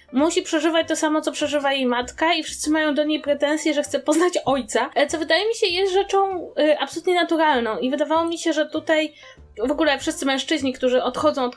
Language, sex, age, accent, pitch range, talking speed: Polish, female, 20-39, native, 250-315 Hz, 200 wpm